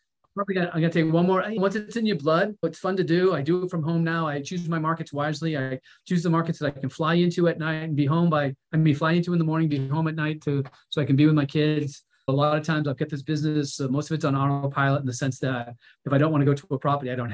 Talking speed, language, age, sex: 310 wpm, English, 40-59, male